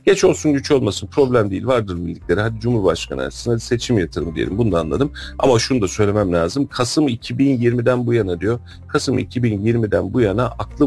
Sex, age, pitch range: male, 40-59, 90-125 Hz